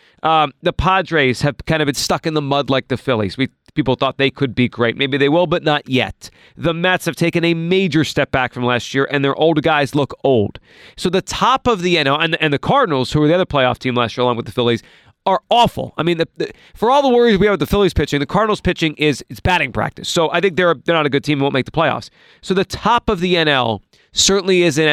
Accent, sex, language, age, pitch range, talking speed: American, male, English, 30-49, 135-175 Hz, 265 wpm